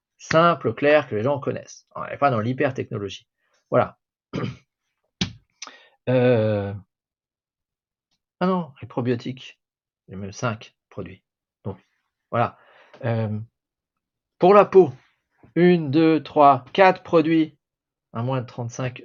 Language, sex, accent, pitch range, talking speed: French, male, French, 120-155 Hz, 115 wpm